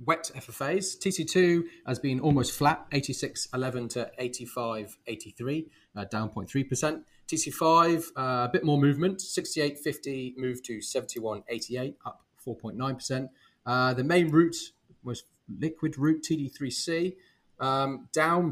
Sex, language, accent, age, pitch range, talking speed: male, English, British, 30-49, 115-155 Hz, 165 wpm